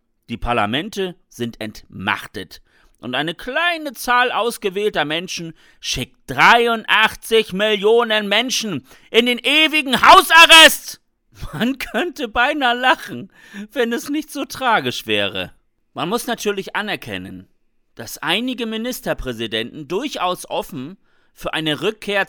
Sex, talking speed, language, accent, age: male, 110 wpm, German, German, 40-59